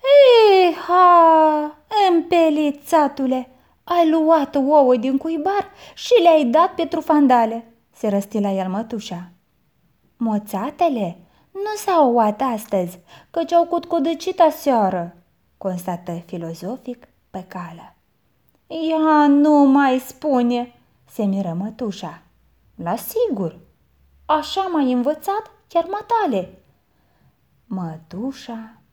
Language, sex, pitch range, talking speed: Romanian, female, 205-320 Hz, 95 wpm